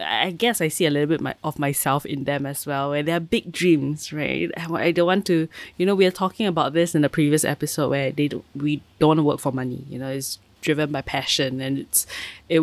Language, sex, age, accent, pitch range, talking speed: English, female, 20-39, Malaysian, 140-170 Hz, 255 wpm